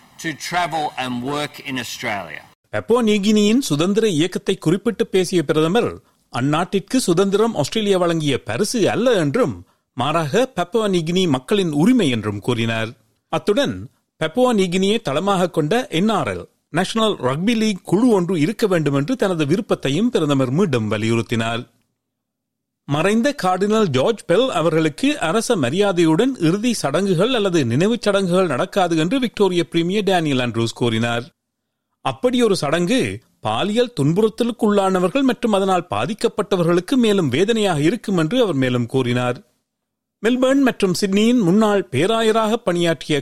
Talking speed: 120 wpm